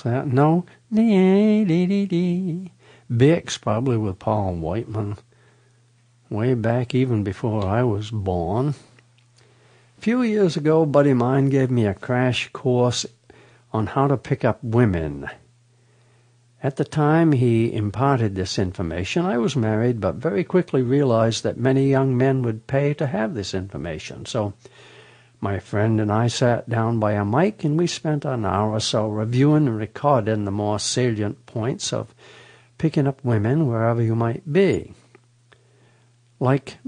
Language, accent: English, American